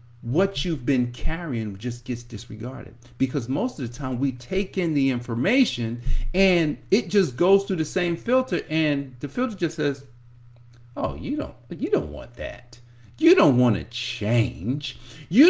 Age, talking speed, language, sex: 50-69, 165 wpm, English, male